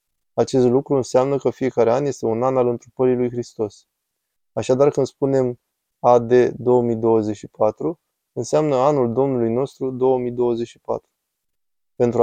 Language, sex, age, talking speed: Romanian, male, 20-39, 120 wpm